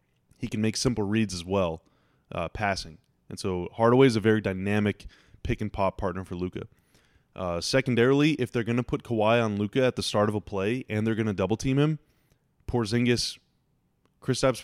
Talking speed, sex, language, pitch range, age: 180 wpm, male, English, 95-115 Hz, 20-39